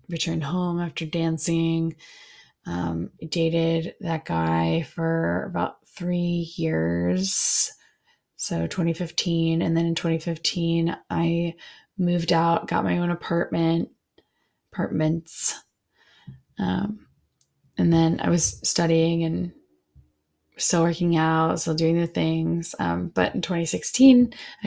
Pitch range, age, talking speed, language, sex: 160-180 Hz, 20-39, 105 wpm, English, female